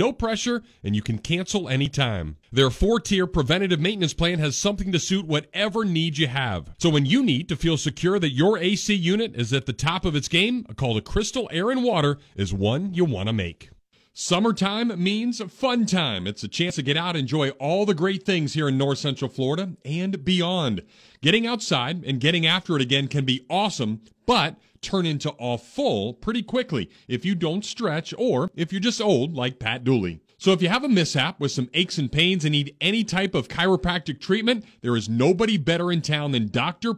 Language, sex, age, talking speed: English, male, 40-59, 210 wpm